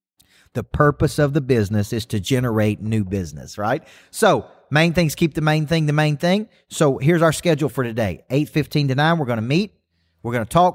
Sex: male